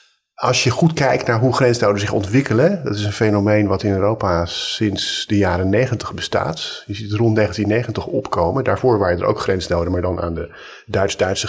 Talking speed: 190 wpm